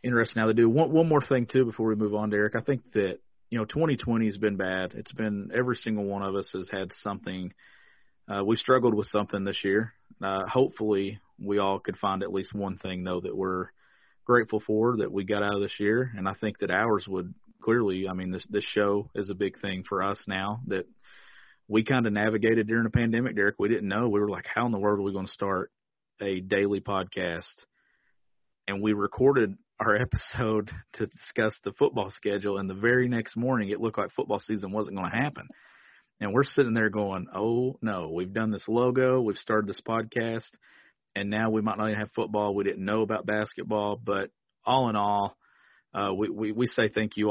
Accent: American